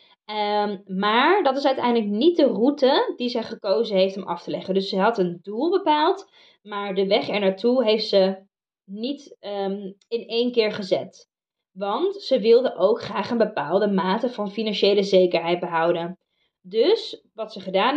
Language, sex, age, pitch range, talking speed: Dutch, female, 20-39, 195-265 Hz, 165 wpm